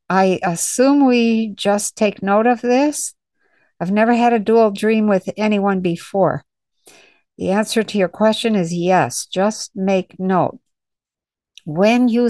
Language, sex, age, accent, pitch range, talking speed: English, female, 60-79, American, 180-225 Hz, 140 wpm